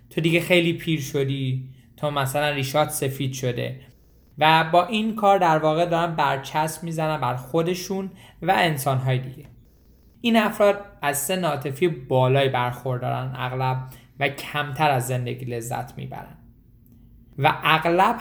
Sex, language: male, Persian